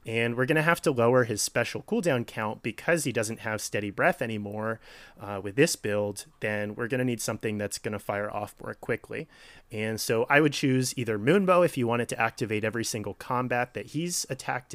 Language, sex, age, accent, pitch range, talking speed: English, male, 30-49, American, 105-125 Hz, 210 wpm